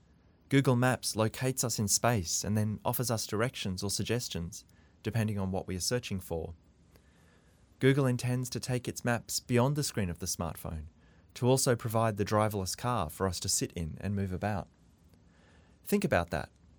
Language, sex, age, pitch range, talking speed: English, male, 30-49, 85-115 Hz, 175 wpm